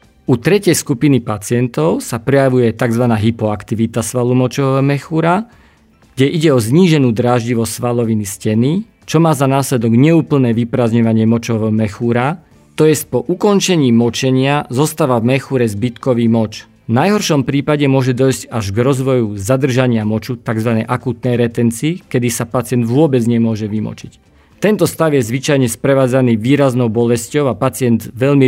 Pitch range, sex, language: 120-145 Hz, male, Slovak